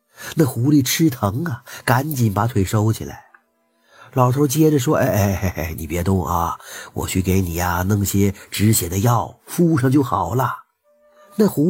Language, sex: Chinese, male